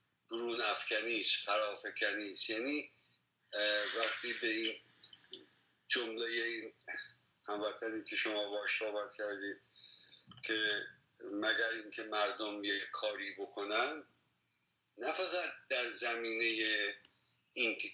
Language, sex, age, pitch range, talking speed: Persian, male, 50-69, 105-140 Hz, 85 wpm